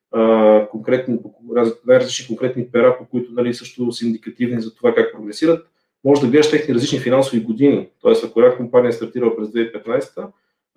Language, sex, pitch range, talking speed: Bulgarian, male, 120-145 Hz, 160 wpm